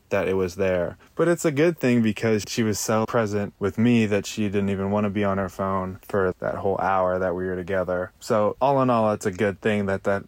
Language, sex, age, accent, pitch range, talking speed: English, male, 20-39, American, 95-115 Hz, 255 wpm